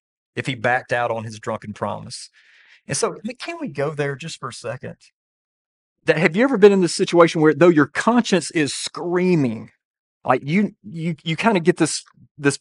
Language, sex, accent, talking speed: English, male, American, 195 wpm